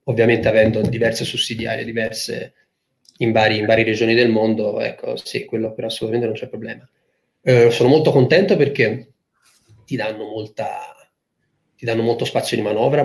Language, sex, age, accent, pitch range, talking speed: Italian, male, 30-49, native, 110-160 Hz, 150 wpm